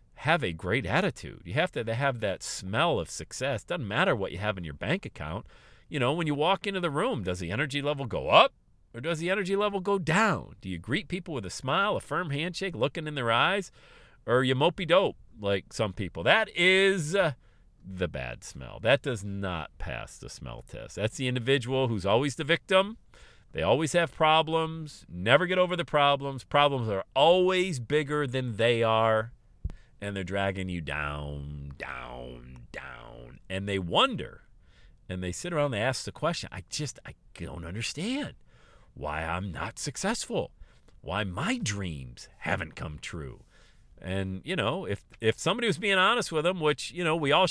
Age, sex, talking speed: 50-69, male, 185 wpm